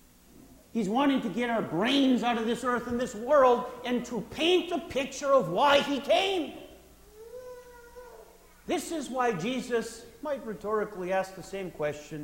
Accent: American